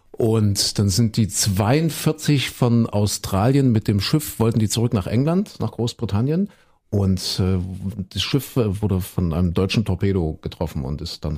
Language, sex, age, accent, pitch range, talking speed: German, male, 50-69, German, 100-130 Hz, 155 wpm